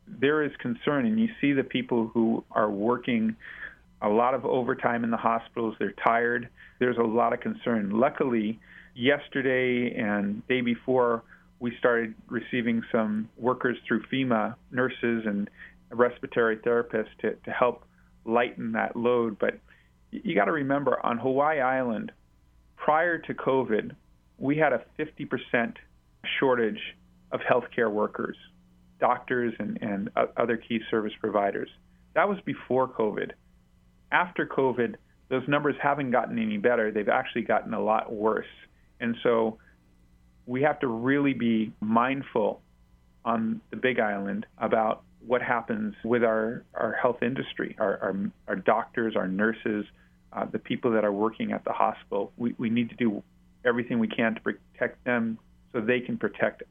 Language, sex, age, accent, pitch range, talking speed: English, male, 40-59, American, 105-130 Hz, 150 wpm